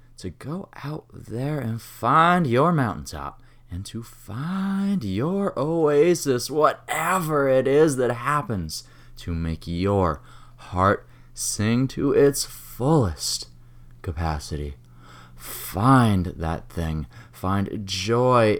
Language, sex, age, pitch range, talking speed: English, male, 20-39, 95-130 Hz, 105 wpm